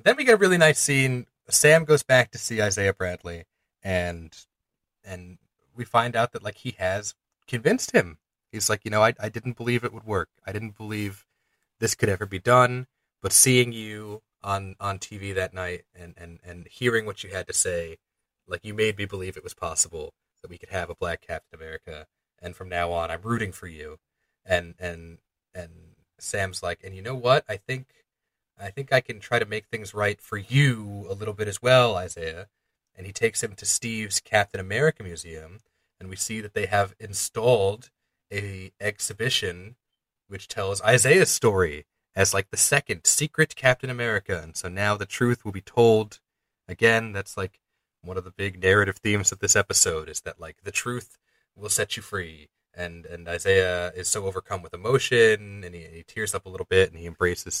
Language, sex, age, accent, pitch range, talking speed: English, male, 30-49, American, 90-115 Hz, 200 wpm